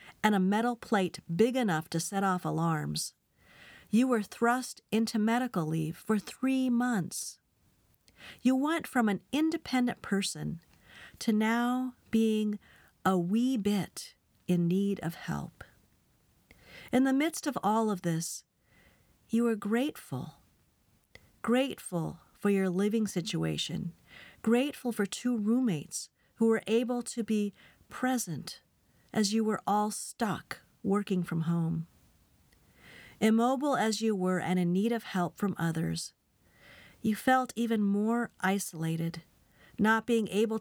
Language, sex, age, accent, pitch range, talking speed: English, female, 50-69, American, 175-230 Hz, 130 wpm